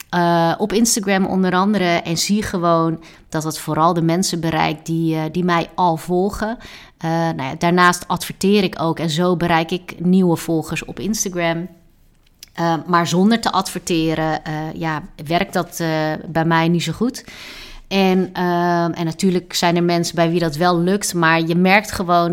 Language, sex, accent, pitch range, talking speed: Dutch, female, Dutch, 160-185 Hz, 170 wpm